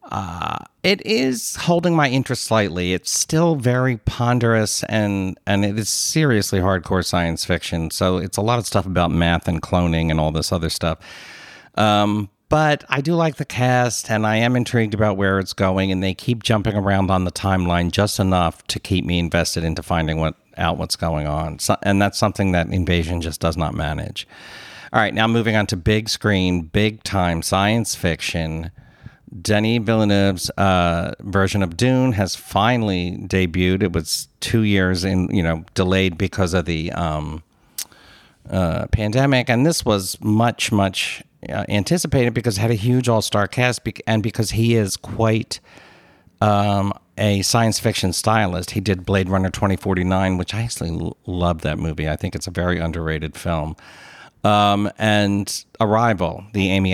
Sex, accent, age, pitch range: male, American, 50-69, 90-110 Hz